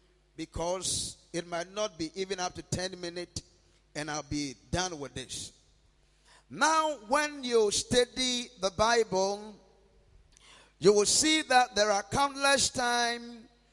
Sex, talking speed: male, 130 wpm